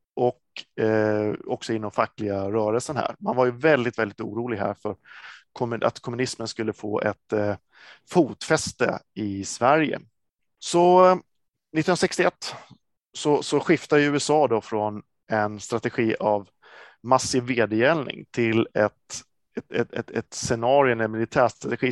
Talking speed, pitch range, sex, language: 130 wpm, 110-140 Hz, male, Swedish